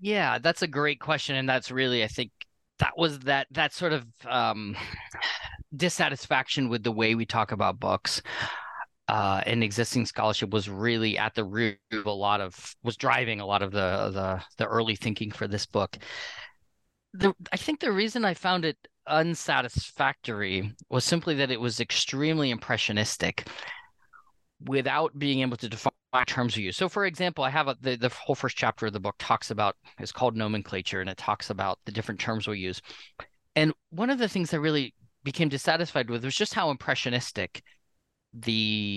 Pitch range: 110-150 Hz